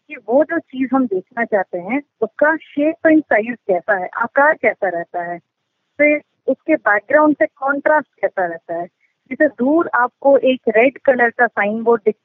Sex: female